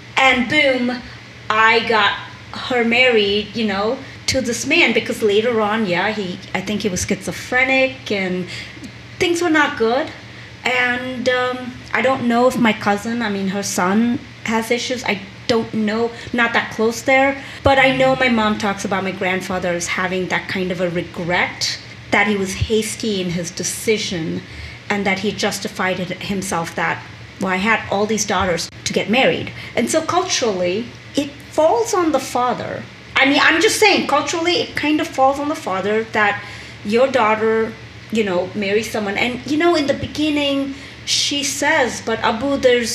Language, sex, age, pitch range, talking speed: English, female, 30-49, 210-275 Hz, 175 wpm